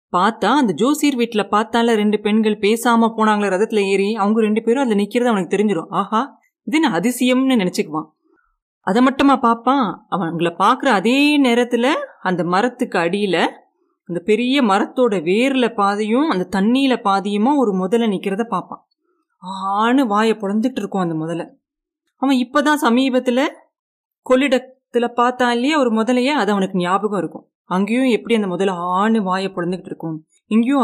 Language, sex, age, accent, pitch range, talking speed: Tamil, female, 30-49, native, 200-265 Hz, 140 wpm